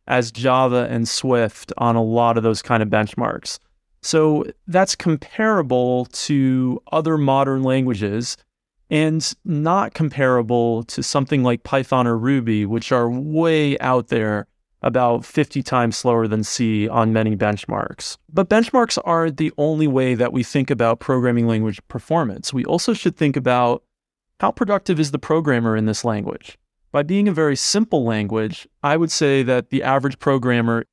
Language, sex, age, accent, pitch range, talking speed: English, male, 30-49, American, 115-145 Hz, 155 wpm